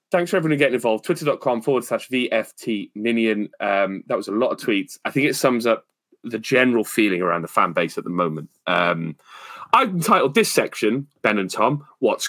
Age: 30-49